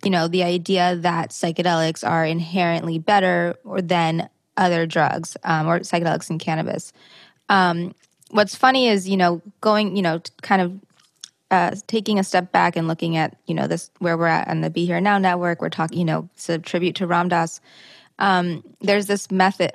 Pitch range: 175-205 Hz